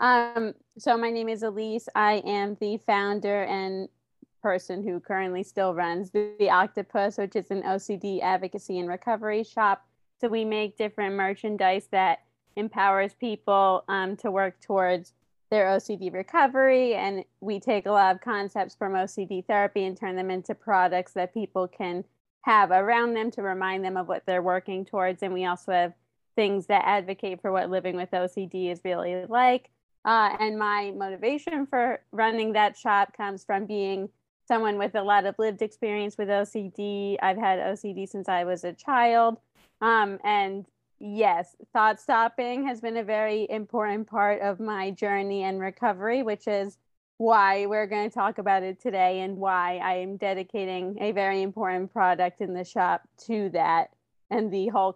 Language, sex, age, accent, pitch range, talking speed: English, female, 20-39, American, 190-215 Hz, 170 wpm